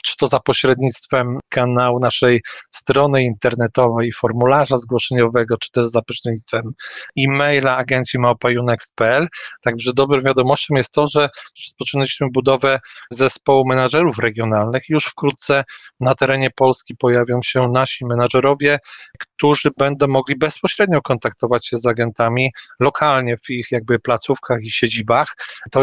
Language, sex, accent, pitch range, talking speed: Polish, male, native, 120-135 Hz, 125 wpm